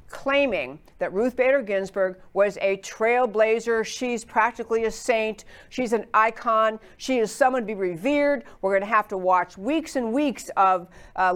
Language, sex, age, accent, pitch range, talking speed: English, female, 60-79, American, 210-265 Hz, 170 wpm